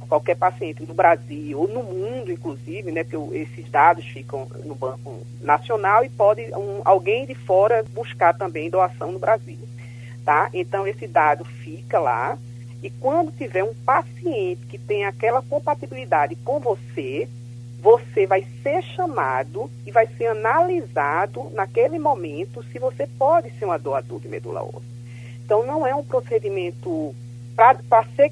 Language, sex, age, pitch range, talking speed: Portuguese, female, 40-59, 120-195 Hz, 150 wpm